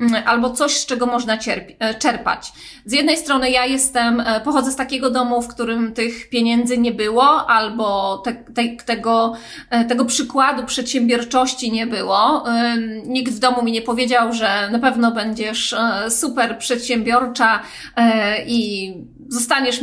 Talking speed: 135 wpm